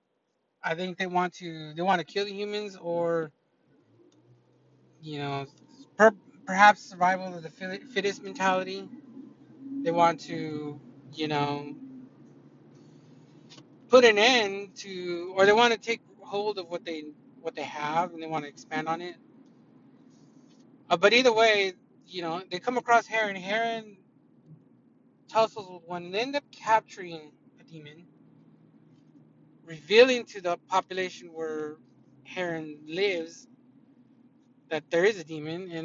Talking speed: 135 wpm